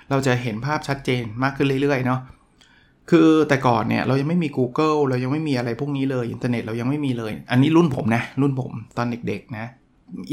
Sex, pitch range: male, 120-150 Hz